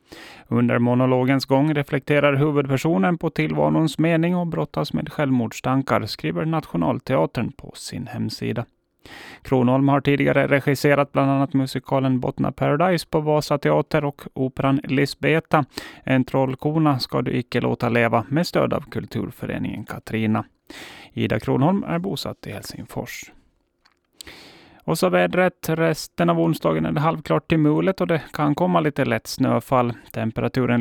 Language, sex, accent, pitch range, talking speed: Swedish, male, native, 120-160 Hz, 130 wpm